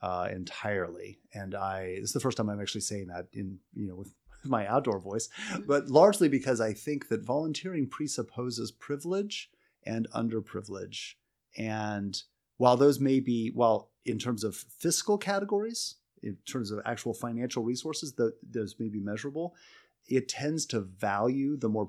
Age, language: 30-49, English